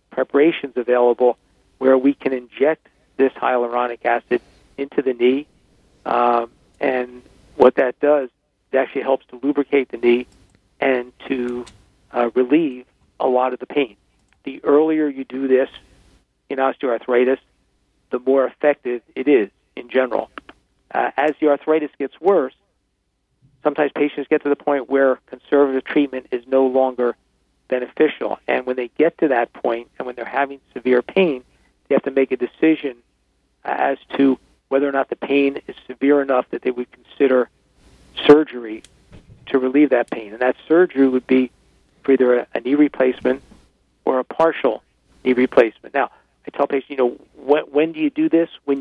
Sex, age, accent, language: male, 50-69, American, English